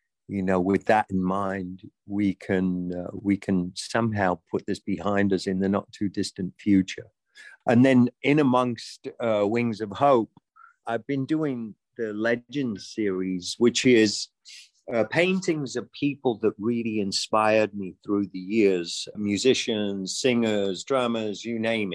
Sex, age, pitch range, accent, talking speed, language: male, 50-69, 95-120 Hz, British, 140 wpm, English